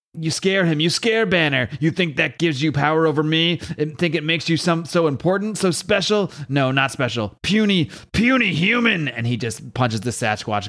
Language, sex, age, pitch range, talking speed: English, male, 30-49, 120-155 Hz, 195 wpm